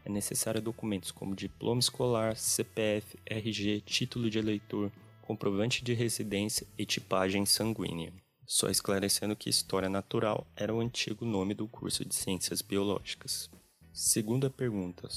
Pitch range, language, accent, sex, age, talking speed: 100-120 Hz, Portuguese, Brazilian, male, 20-39, 130 wpm